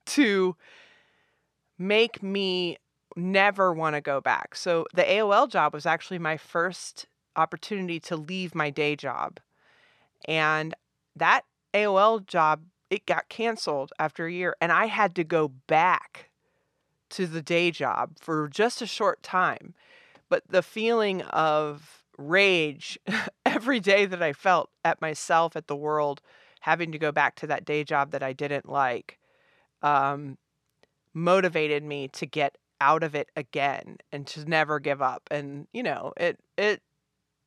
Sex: female